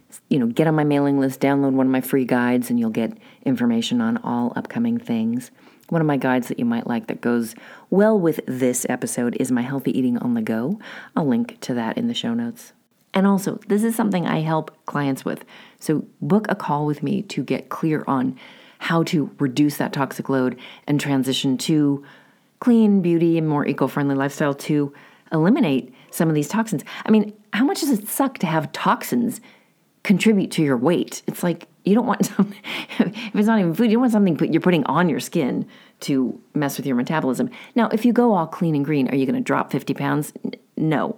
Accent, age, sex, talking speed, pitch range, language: American, 40-59, female, 215 wpm, 145-230 Hz, English